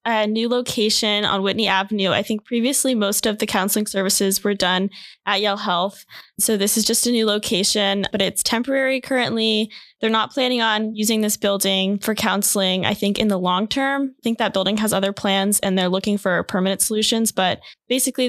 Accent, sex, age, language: American, female, 10-29, English